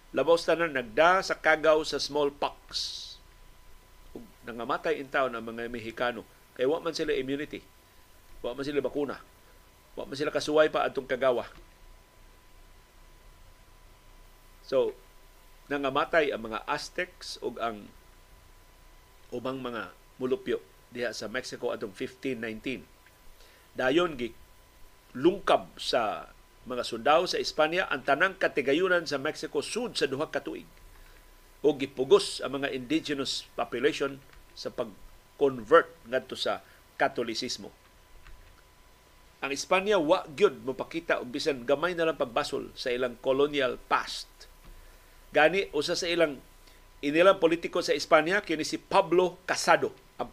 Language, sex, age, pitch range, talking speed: Filipino, male, 50-69, 120-165 Hz, 120 wpm